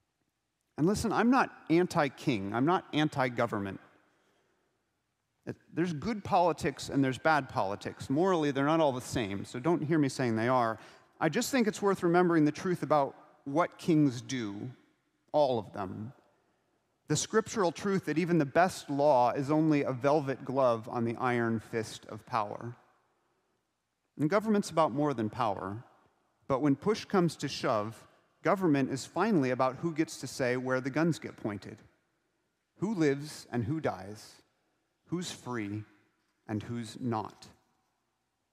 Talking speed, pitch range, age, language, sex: 150 wpm, 120-175 Hz, 40-59, English, male